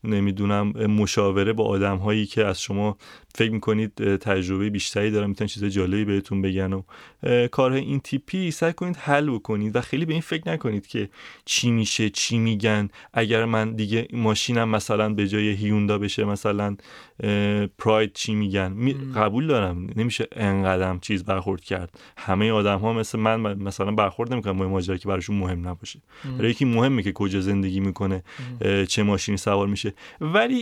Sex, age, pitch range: male, 30-49, 105-130 Hz